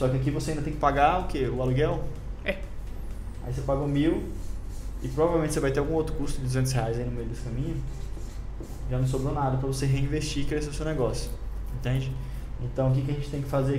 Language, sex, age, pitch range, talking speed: Portuguese, male, 20-39, 120-145 Hz, 245 wpm